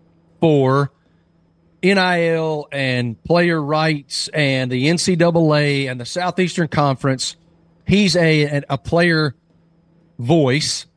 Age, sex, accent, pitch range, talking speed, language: 40-59, male, American, 130-170 Hz, 95 wpm, English